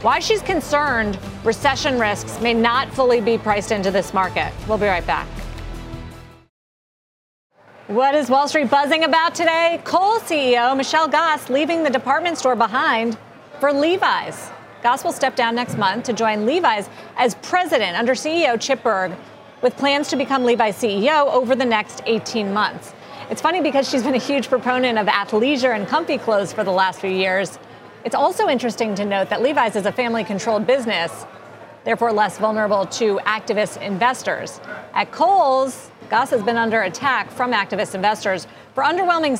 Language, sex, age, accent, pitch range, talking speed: English, female, 30-49, American, 215-280 Hz, 165 wpm